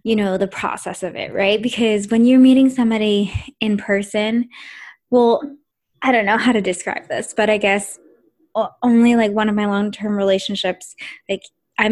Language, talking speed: English, 170 wpm